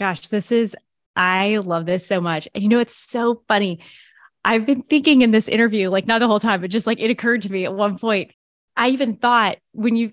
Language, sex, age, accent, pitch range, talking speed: English, female, 20-39, American, 180-225 Hz, 235 wpm